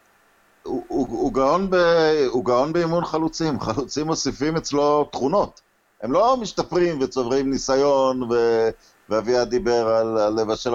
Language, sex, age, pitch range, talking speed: Hebrew, male, 50-69, 115-150 Hz, 115 wpm